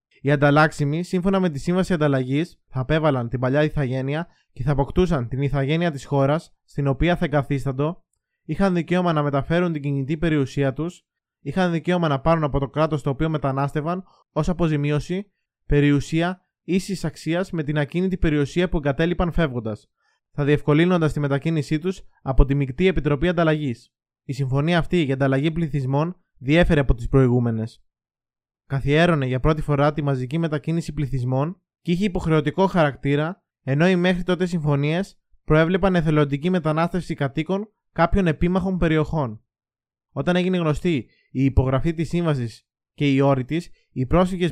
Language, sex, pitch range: Greek, male, 140-175 Hz